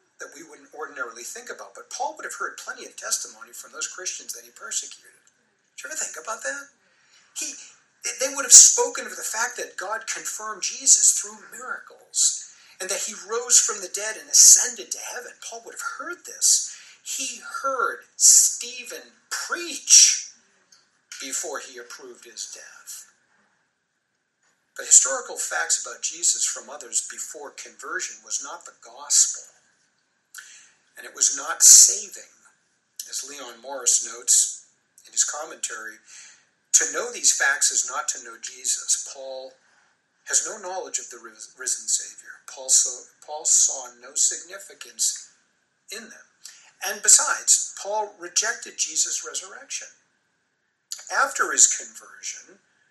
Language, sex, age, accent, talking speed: English, male, 50-69, American, 140 wpm